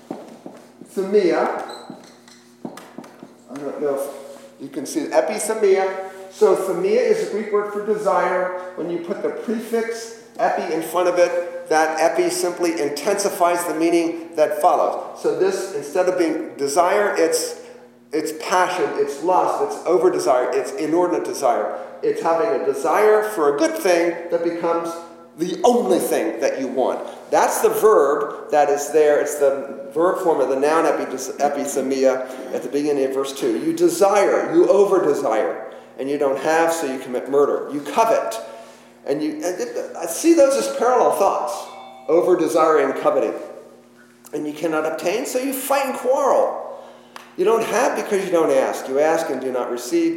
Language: English